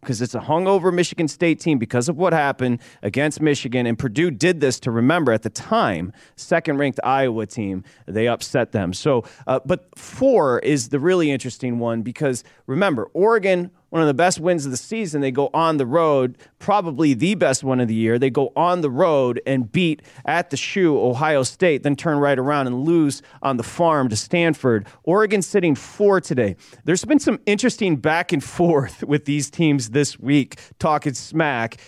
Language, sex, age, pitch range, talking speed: English, male, 30-49, 120-165 Hz, 190 wpm